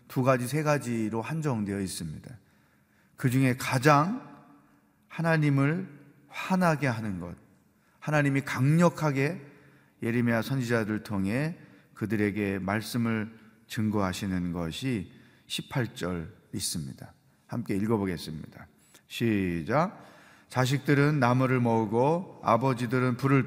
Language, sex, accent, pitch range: Korean, male, native, 110-145 Hz